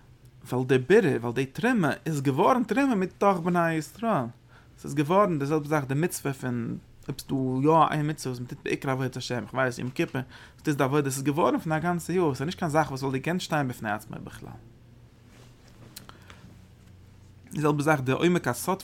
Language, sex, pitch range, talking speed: English, male, 120-145 Hz, 190 wpm